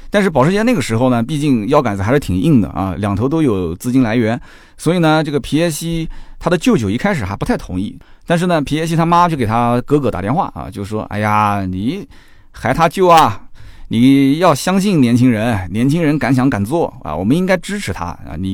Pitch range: 100-145 Hz